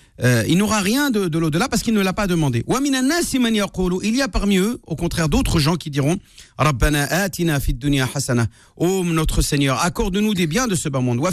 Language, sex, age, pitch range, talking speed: French, male, 50-69, 125-175 Hz, 230 wpm